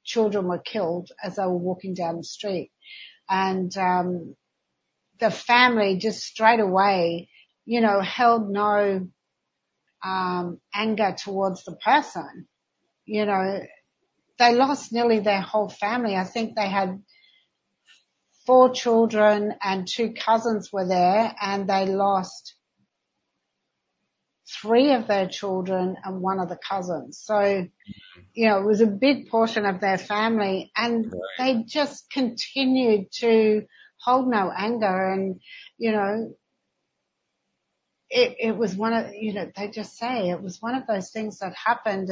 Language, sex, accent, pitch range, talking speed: English, female, Australian, 190-235 Hz, 140 wpm